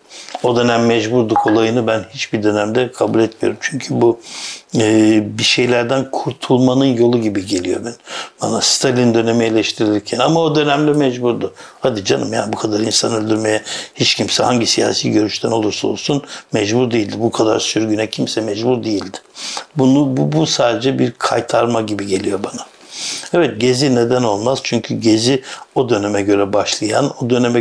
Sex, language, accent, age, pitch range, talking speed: male, Turkish, native, 60-79, 110-125 Hz, 150 wpm